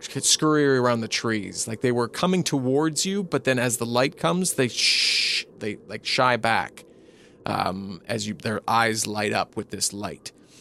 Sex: male